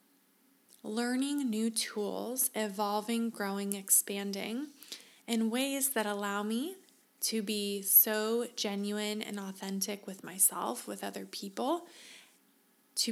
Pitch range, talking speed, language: 205-240 Hz, 105 wpm, English